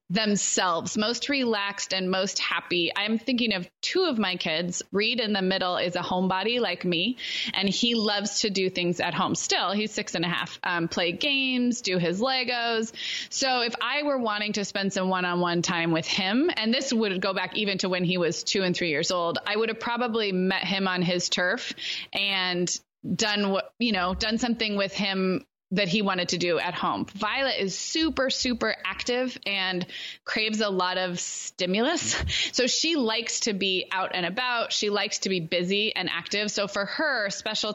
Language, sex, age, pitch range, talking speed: English, female, 20-39, 185-225 Hz, 195 wpm